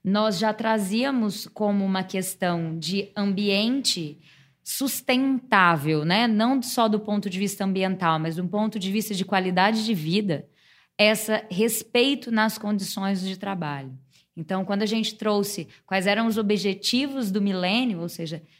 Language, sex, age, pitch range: Portuguese, female, 20-39, 185-220 Hz